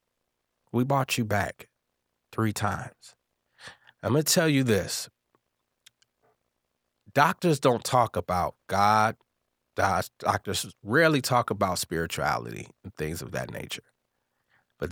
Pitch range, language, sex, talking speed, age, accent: 90-120 Hz, English, male, 115 wpm, 30-49, American